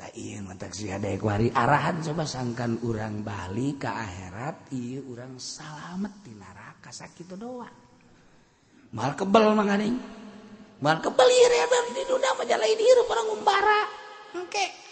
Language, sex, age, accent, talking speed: Indonesian, male, 40-59, native, 135 wpm